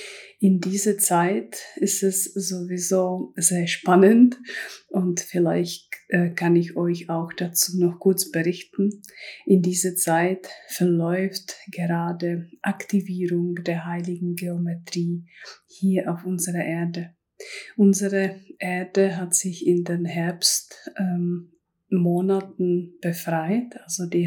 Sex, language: female, German